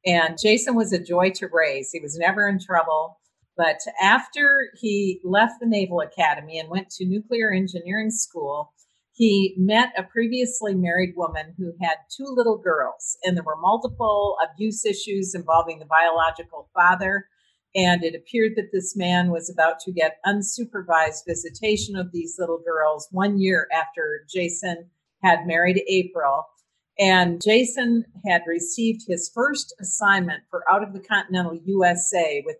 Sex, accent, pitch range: female, American, 170-205 Hz